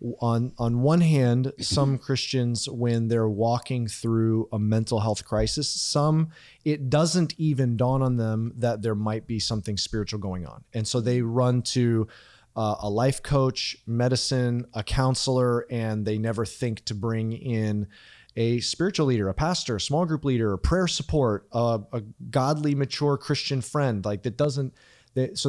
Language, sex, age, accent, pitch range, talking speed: English, male, 30-49, American, 110-140 Hz, 165 wpm